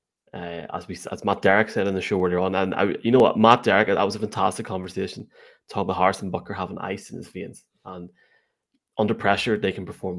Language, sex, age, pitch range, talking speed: English, male, 20-39, 95-120 Hz, 230 wpm